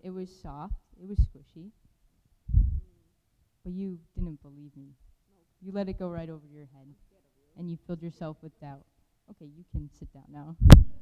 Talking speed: 170 wpm